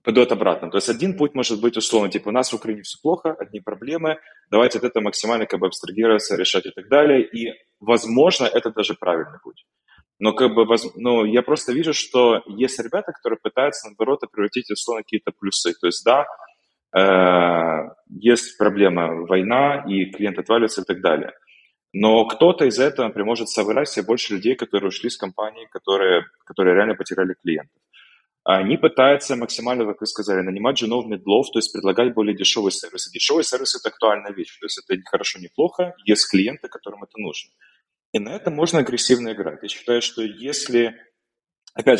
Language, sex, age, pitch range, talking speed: Ukrainian, male, 20-39, 100-125 Hz, 180 wpm